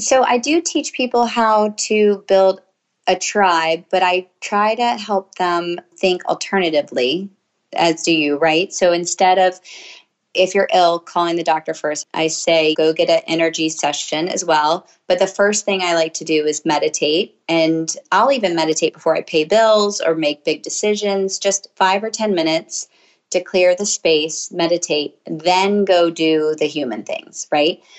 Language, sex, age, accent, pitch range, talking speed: English, female, 30-49, American, 165-205 Hz, 170 wpm